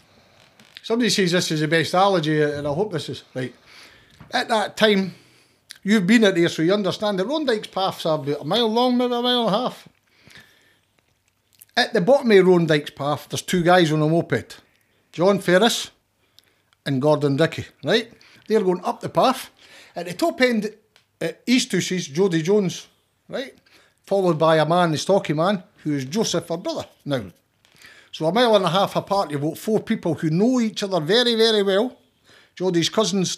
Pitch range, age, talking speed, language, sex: 155-210 Hz, 60-79, 185 wpm, English, male